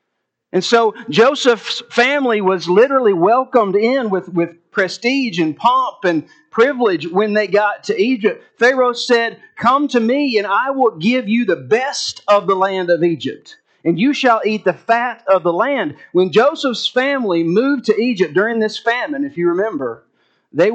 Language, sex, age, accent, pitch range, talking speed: English, male, 40-59, American, 175-245 Hz, 170 wpm